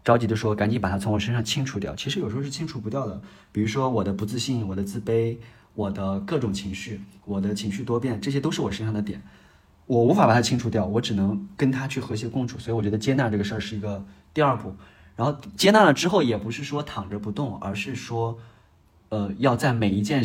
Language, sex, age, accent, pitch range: Chinese, male, 20-39, native, 100-130 Hz